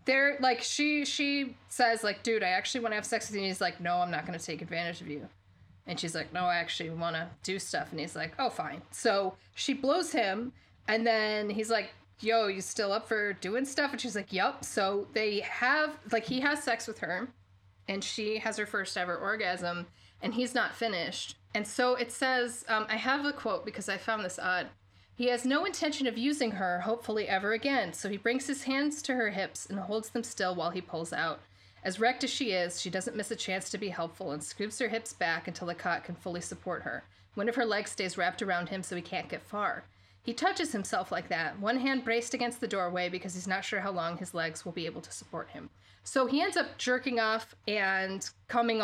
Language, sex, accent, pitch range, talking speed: English, female, American, 180-240 Hz, 235 wpm